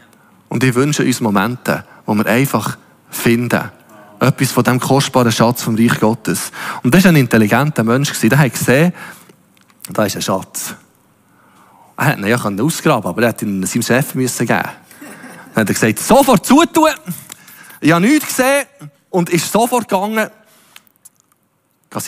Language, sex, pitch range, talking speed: German, male, 125-180 Hz, 160 wpm